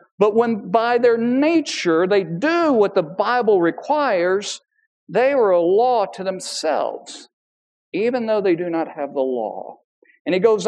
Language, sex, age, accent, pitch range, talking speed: English, male, 50-69, American, 180-250 Hz, 155 wpm